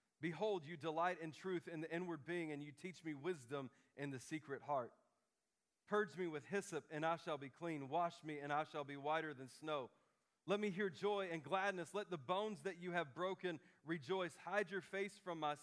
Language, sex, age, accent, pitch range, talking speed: English, male, 40-59, American, 155-185 Hz, 210 wpm